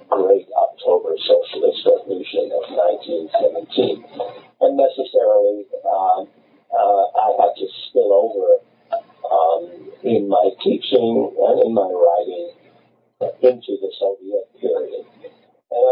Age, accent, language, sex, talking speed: 50-69, American, English, male, 105 wpm